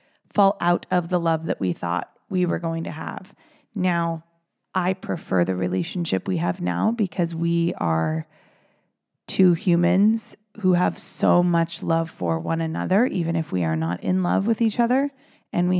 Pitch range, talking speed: 165-190 Hz, 175 wpm